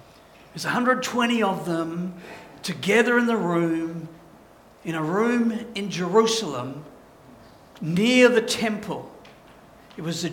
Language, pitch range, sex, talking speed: English, 205-270 Hz, male, 110 wpm